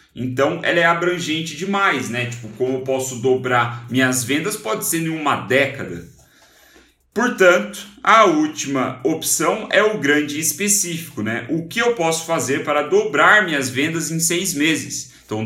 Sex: male